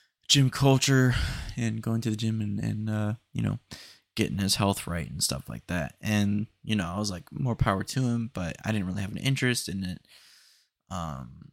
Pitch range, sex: 100-120 Hz, male